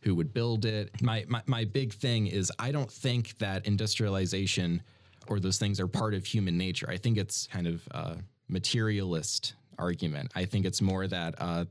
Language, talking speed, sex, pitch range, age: English, 190 wpm, male, 90-115 Hz, 20-39